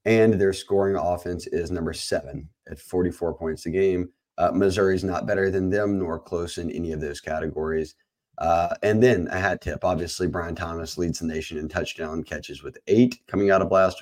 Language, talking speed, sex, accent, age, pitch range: English, 195 wpm, male, American, 30-49, 85-110 Hz